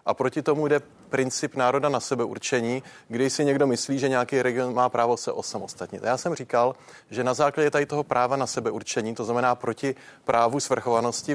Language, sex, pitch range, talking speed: Czech, male, 115-130 Hz, 185 wpm